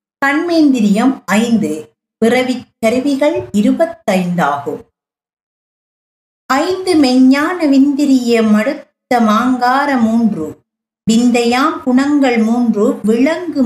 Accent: native